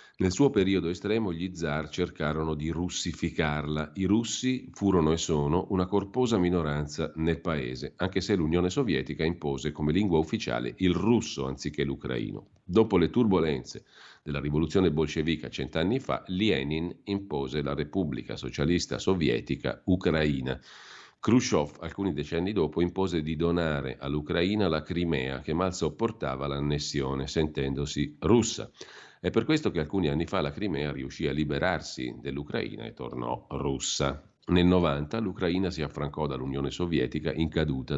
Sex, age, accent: male, 40-59, native